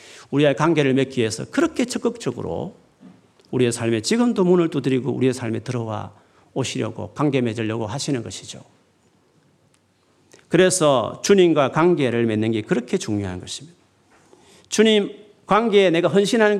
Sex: male